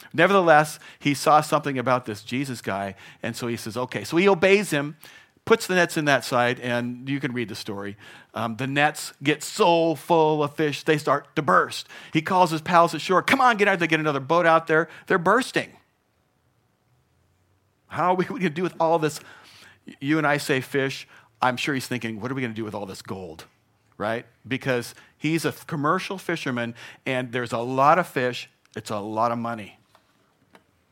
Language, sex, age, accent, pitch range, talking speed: English, male, 50-69, American, 100-145 Hz, 195 wpm